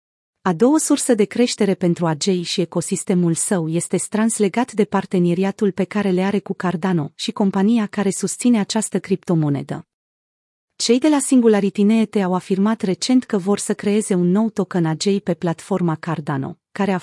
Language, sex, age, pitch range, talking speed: Romanian, female, 30-49, 175-215 Hz, 165 wpm